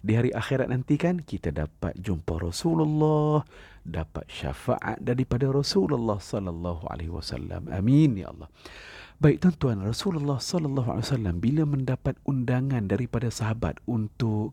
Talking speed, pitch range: 110 wpm, 100-145 Hz